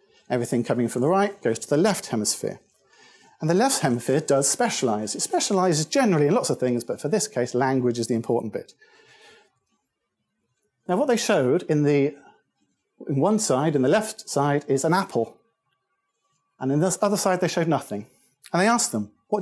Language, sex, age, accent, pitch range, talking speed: English, male, 40-59, British, 140-210 Hz, 190 wpm